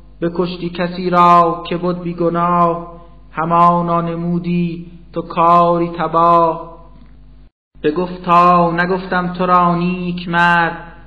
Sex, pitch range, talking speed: male, 160-170 Hz, 115 wpm